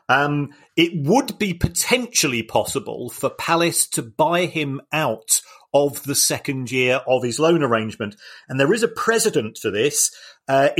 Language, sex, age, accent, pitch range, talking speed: English, male, 40-59, British, 125-160 Hz, 155 wpm